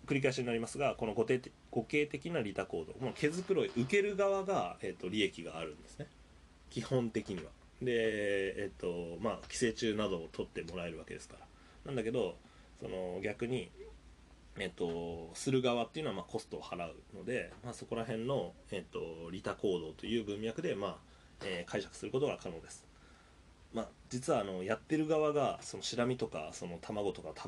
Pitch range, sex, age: 85-125 Hz, male, 20-39